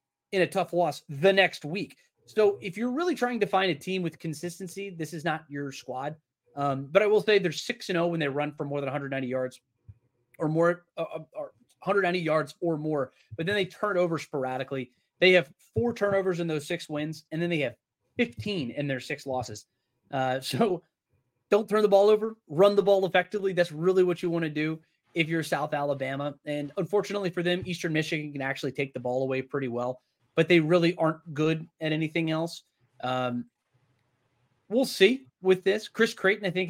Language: English